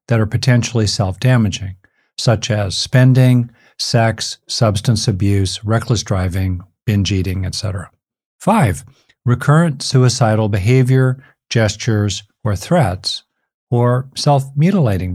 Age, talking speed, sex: 50-69, 95 wpm, male